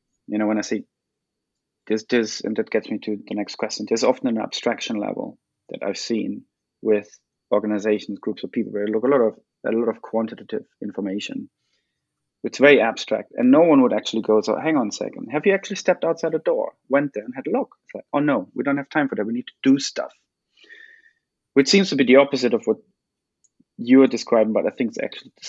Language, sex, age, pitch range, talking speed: English, male, 30-49, 110-145 Hz, 235 wpm